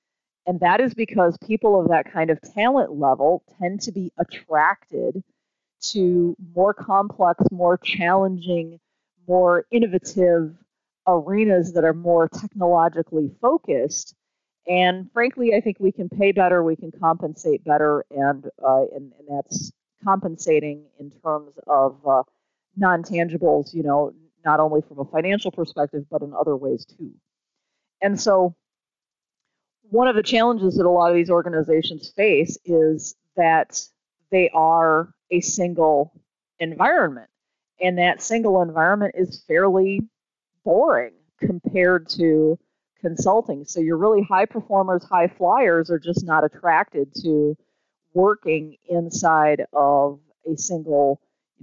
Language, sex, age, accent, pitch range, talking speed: English, female, 40-59, American, 155-190 Hz, 130 wpm